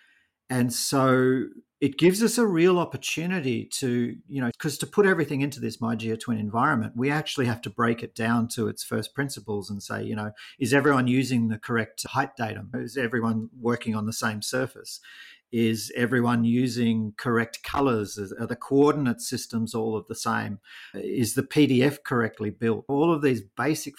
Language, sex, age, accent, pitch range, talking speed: English, male, 40-59, Australian, 110-135 Hz, 180 wpm